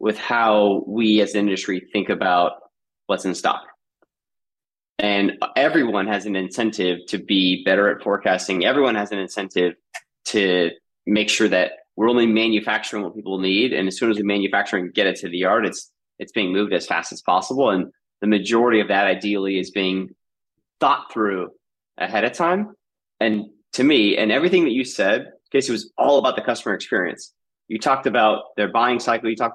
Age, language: 30-49, English